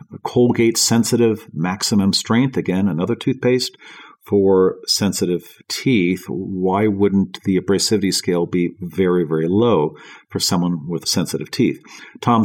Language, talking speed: English, 120 wpm